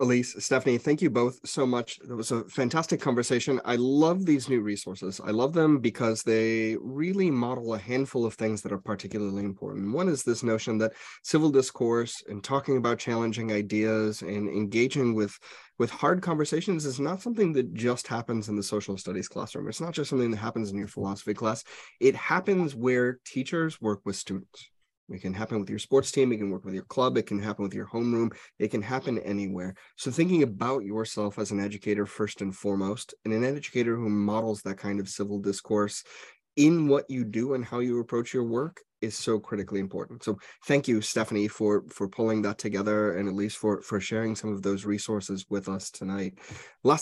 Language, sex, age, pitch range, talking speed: English, male, 30-49, 100-125 Hz, 200 wpm